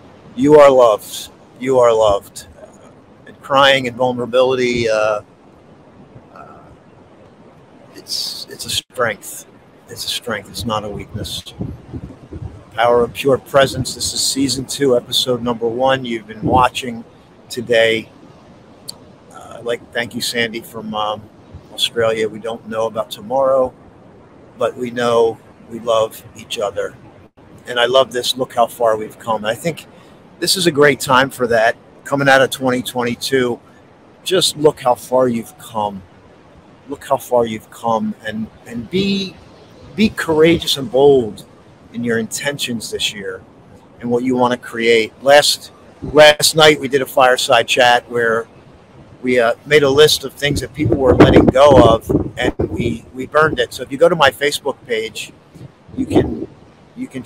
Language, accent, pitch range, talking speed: English, American, 115-140 Hz, 155 wpm